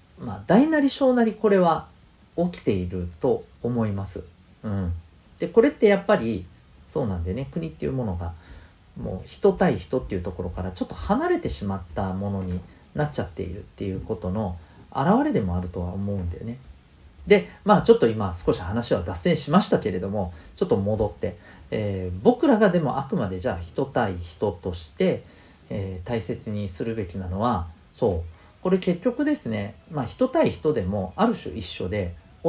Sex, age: male, 40-59